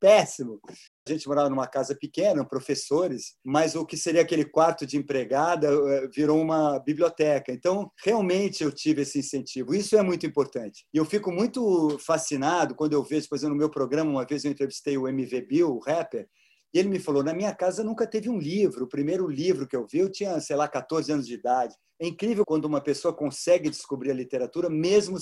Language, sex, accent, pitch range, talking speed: Portuguese, male, Brazilian, 145-185 Hz, 205 wpm